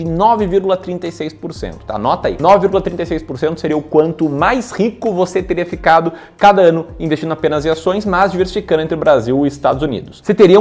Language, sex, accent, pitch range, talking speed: Portuguese, male, Brazilian, 130-195 Hz, 170 wpm